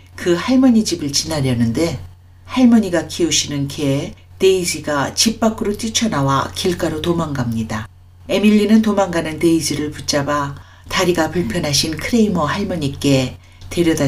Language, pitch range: Korean, 120-175 Hz